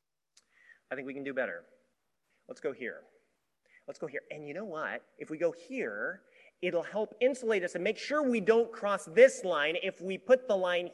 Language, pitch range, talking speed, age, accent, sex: English, 165-255 Hz, 205 wpm, 30-49, American, male